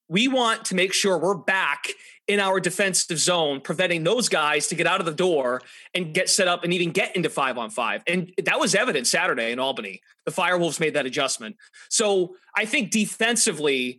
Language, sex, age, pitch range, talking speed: English, male, 30-49, 150-200 Hz, 200 wpm